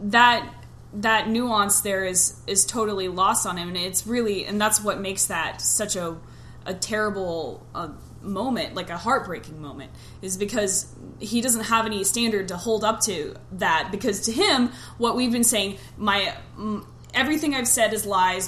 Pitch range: 185-220 Hz